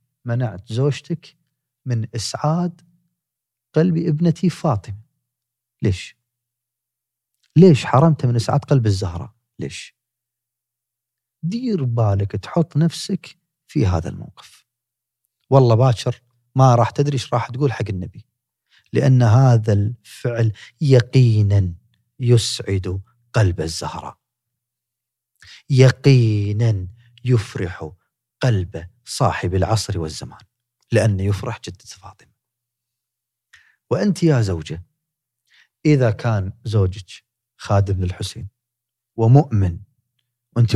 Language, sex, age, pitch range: Arabic, male, 40-59, 105-130 Hz